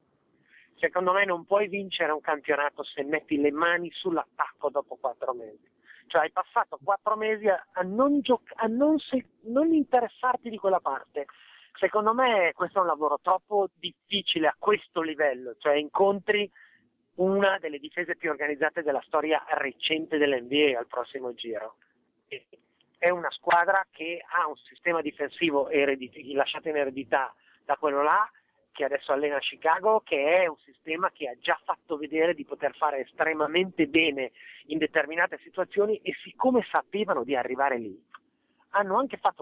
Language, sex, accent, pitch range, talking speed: Italian, male, native, 150-210 Hz, 145 wpm